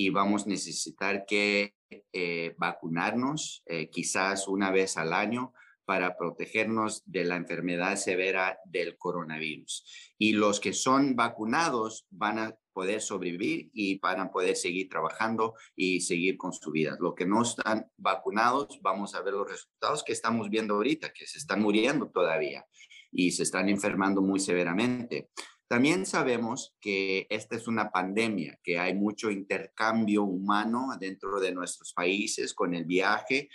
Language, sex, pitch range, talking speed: Spanish, male, 95-115 Hz, 150 wpm